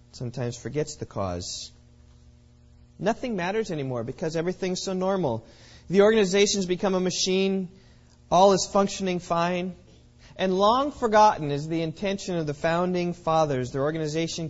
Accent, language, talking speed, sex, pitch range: American, English, 130 wpm, male, 120-170 Hz